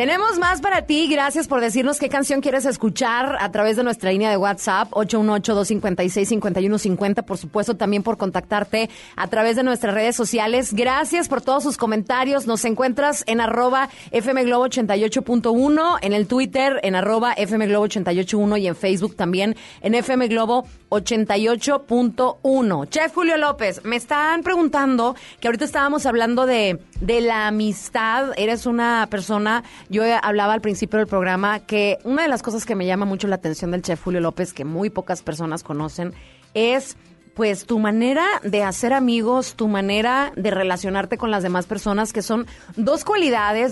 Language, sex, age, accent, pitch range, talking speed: Spanish, female, 30-49, Mexican, 195-255 Hz, 165 wpm